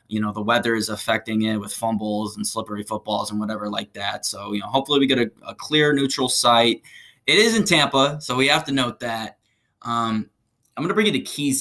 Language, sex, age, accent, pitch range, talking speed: English, male, 20-39, American, 115-145 Hz, 235 wpm